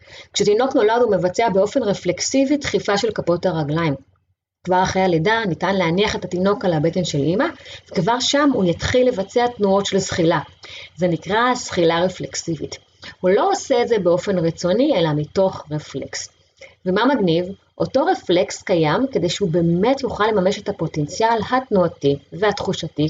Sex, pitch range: female, 160-225 Hz